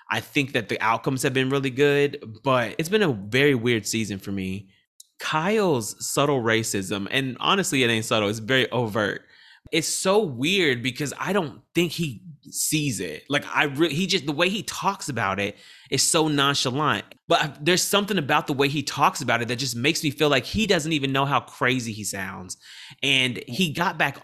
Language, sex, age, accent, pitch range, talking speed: English, male, 30-49, American, 115-150 Hz, 200 wpm